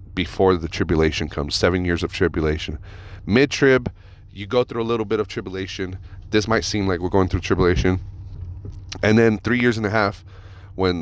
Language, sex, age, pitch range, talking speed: English, male, 30-49, 90-100 Hz, 180 wpm